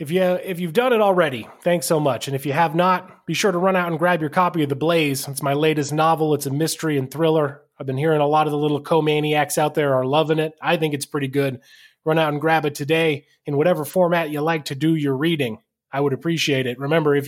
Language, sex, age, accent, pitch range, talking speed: English, male, 20-39, American, 140-170 Hz, 265 wpm